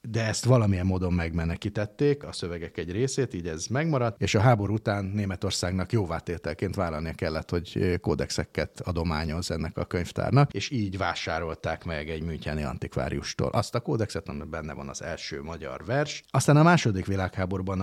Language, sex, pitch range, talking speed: Hungarian, male, 80-110 Hz, 160 wpm